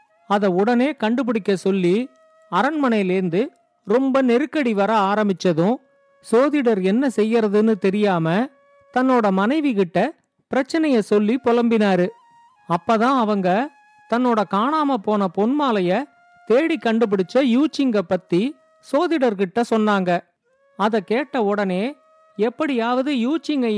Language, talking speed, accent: Tamil, 90 wpm, native